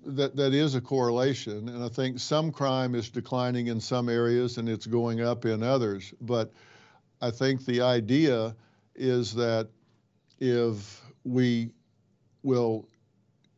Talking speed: 135 wpm